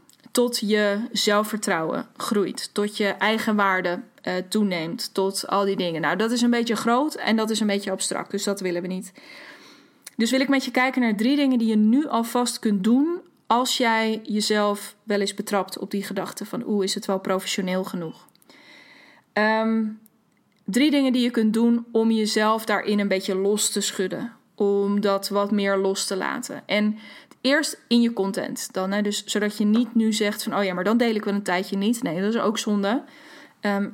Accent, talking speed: Dutch, 200 wpm